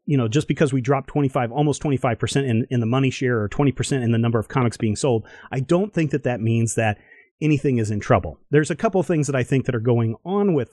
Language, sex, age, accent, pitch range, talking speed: English, male, 30-49, American, 115-140 Hz, 275 wpm